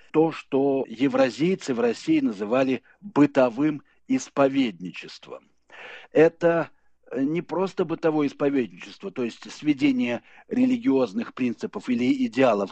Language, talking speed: Russian, 95 wpm